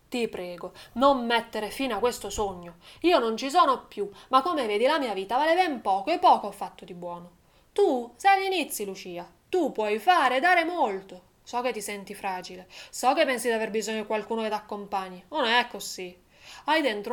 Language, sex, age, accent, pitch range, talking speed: Italian, female, 20-39, native, 210-295 Hz, 210 wpm